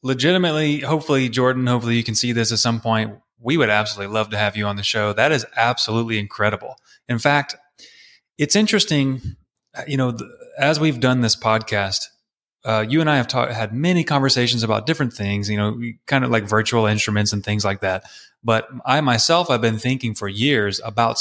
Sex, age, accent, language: male, 30-49, American, English